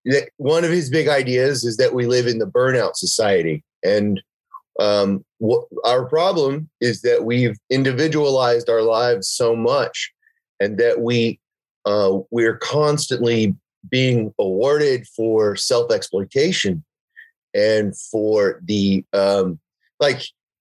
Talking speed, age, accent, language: 115 wpm, 30-49, American, English